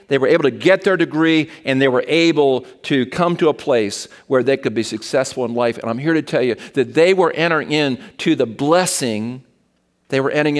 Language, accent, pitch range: English, American, 115-145 Hz